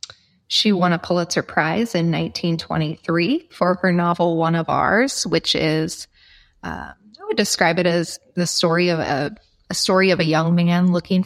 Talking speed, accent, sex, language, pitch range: 170 wpm, American, female, English, 165-185 Hz